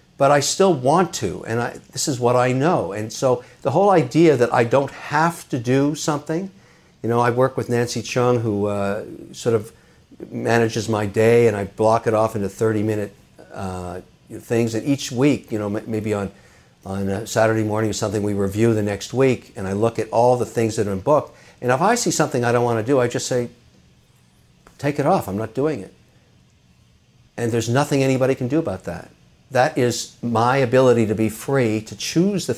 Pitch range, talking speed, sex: 110-140 Hz, 210 wpm, male